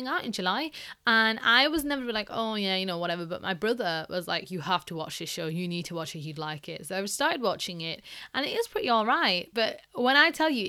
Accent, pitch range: British, 190-285 Hz